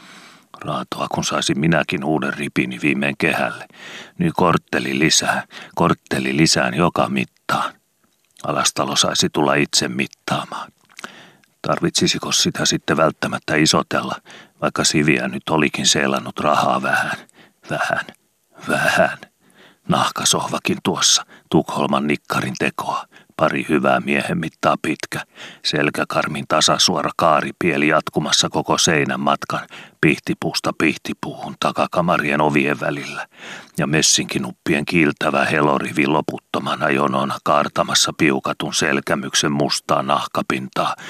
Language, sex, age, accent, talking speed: Finnish, male, 40-59, native, 100 wpm